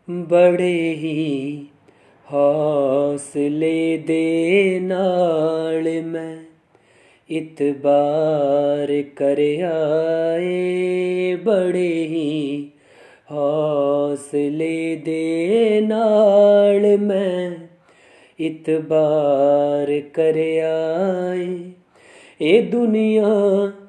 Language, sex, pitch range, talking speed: Punjabi, male, 155-200 Hz, 45 wpm